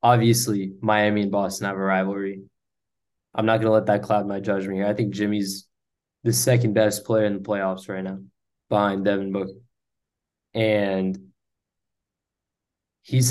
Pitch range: 100-115 Hz